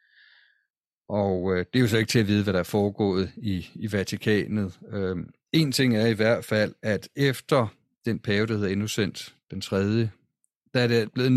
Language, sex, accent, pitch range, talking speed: Danish, male, native, 100-120 Hz, 195 wpm